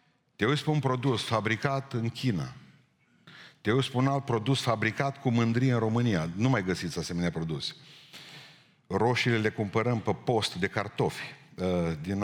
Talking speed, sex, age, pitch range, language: 155 wpm, male, 50-69, 110-145 Hz, Romanian